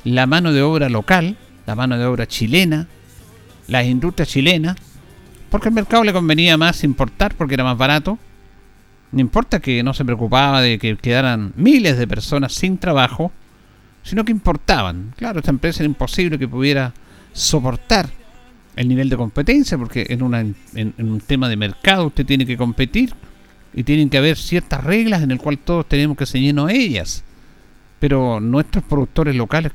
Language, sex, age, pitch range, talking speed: Spanish, male, 50-69, 120-170 Hz, 170 wpm